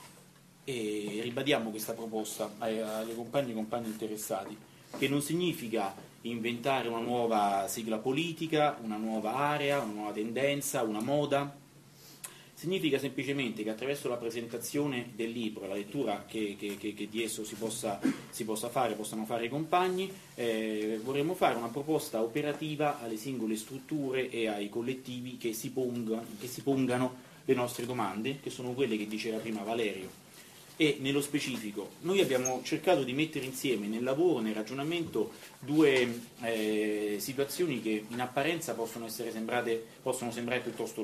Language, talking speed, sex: Italian, 155 wpm, male